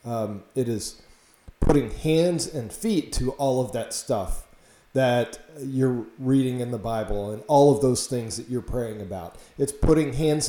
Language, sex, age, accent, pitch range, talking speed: English, male, 40-59, American, 120-150 Hz, 170 wpm